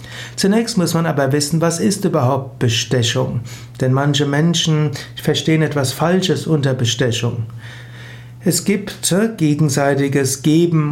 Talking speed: 115 wpm